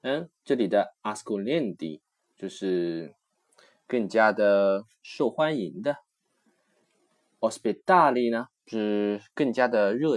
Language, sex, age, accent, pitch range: Chinese, male, 20-39, native, 100-135 Hz